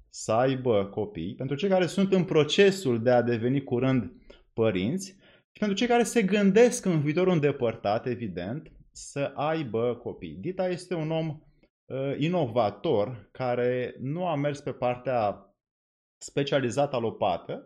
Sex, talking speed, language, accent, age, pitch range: male, 140 wpm, Romanian, native, 20-39, 125-160 Hz